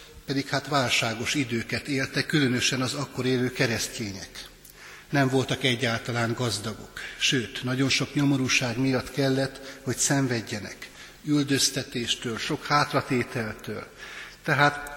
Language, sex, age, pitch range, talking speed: Hungarian, male, 60-79, 115-140 Hz, 105 wpm